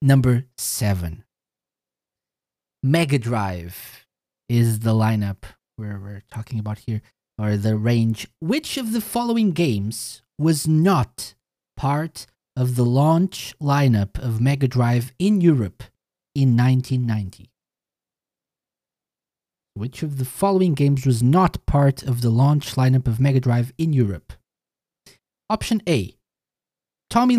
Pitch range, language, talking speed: 110-155 Hz, English, 120 wpm